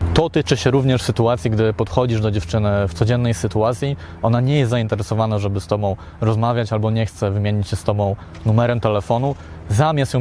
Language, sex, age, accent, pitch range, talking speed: Polish, male, 20-39, native, 110-130 Hz, 180 wpm